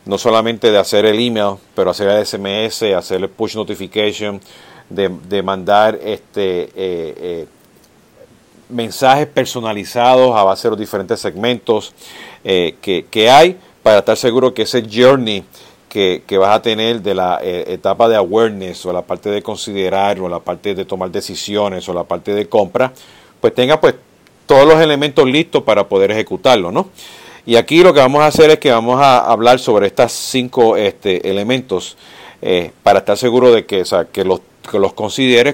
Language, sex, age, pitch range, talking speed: Spanish, male, 50-69, 105-150 Hz, 180 wpm